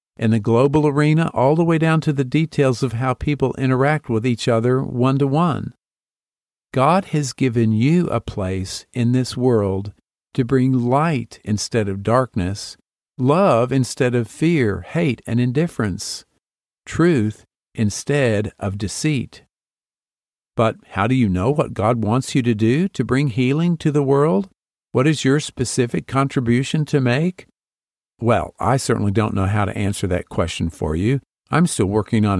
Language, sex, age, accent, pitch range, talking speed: English, male, 50-69, American, 105-145 Hz, 155 wpm